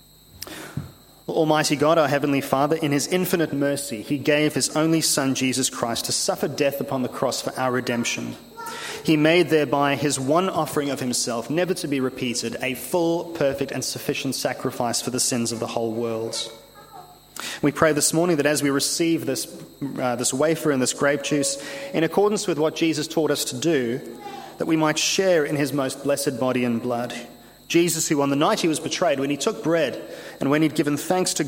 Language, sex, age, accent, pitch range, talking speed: English, male, 30-49, Australian, 125-160 Hz, 195 wpm